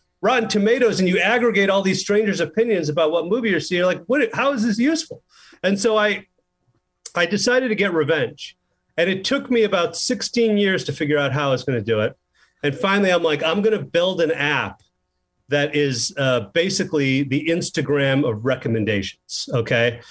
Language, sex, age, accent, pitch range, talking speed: English, male, 40-59, American, 150-205 Hz, 195 wpm